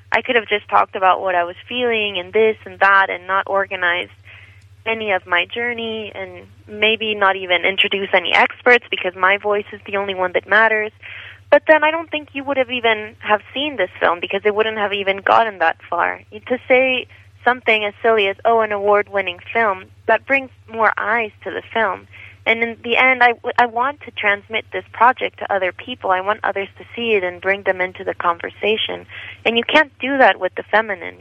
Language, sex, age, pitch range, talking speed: English, female, 20-39, 175-220 Hz, 210 wpm